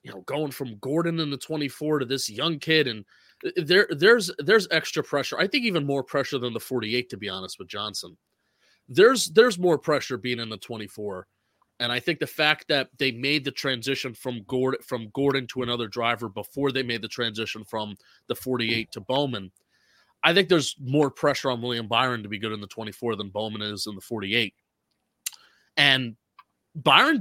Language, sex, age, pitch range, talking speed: English, male, 30-49, 115-145 Hz, 195 wpm